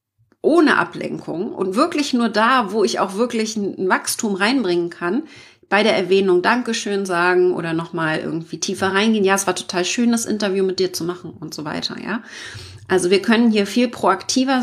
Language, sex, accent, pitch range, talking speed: German, female, German, 185-230 Hz, 185 wpm